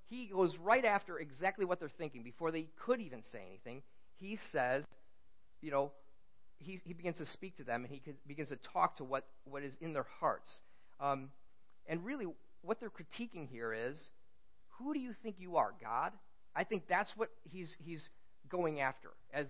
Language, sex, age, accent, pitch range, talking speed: English, male, 40-59, American, 130-180 Hz, 190 wpm